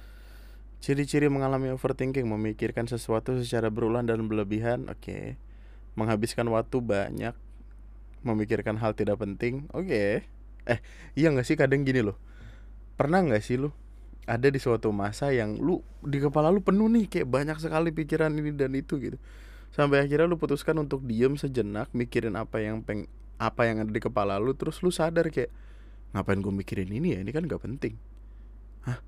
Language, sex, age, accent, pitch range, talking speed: Indonesian, male, 20-39, native, 105-145 Hz, 165 wpm